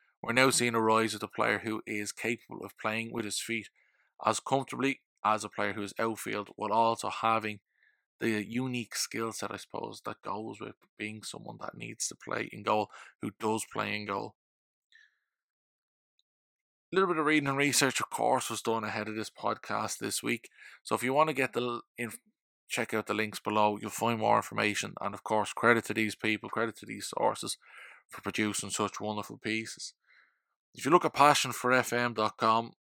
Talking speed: 190 wpm